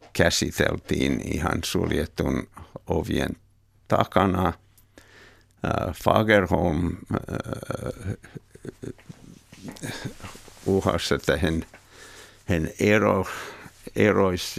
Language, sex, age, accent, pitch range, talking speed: Finnish, male, 60-79, native, 90-105 Hz, 45 wpm